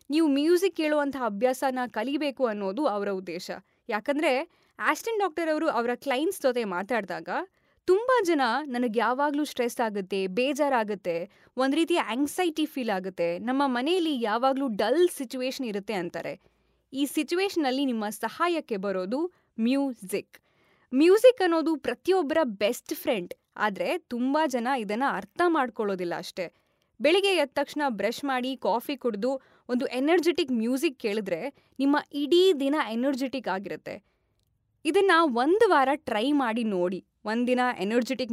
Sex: female